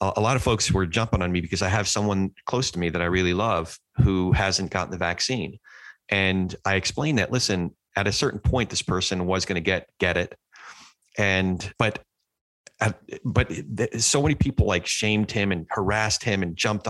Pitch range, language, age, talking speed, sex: 95-115 Hz, English, 30-49, 190 wpm, male